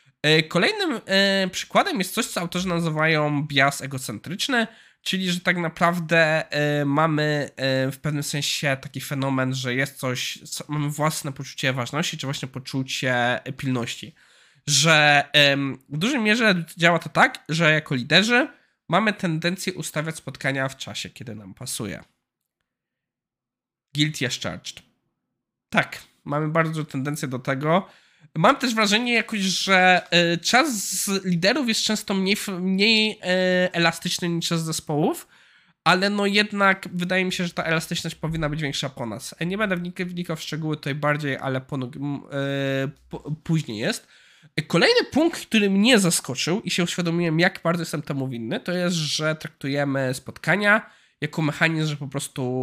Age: 20-39